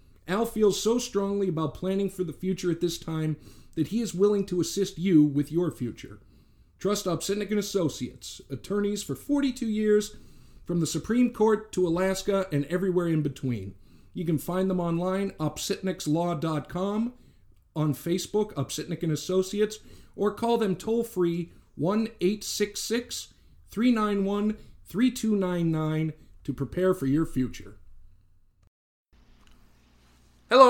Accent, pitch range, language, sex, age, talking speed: American, 140-195 Hz, English, male, 50-69, 115 wpm